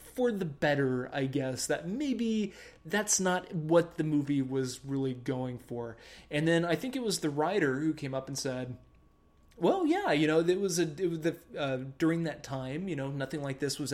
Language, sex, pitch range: English, male, 135-205 Hz